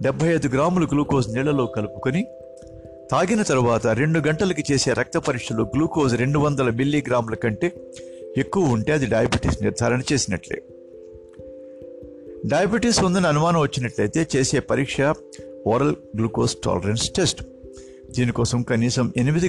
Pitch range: 110-150 Hz